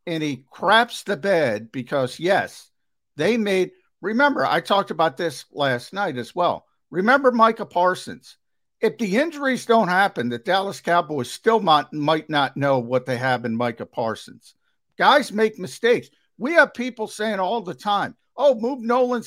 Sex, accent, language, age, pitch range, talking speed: male, American, English, 50-69, 140-215 Hz, 165 wpm